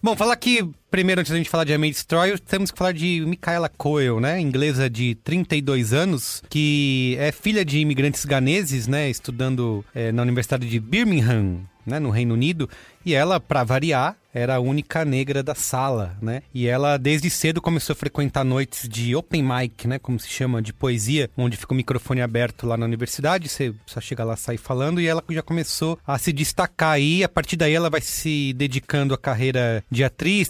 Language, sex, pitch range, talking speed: English, male, 125-165 Hz, 200 wpm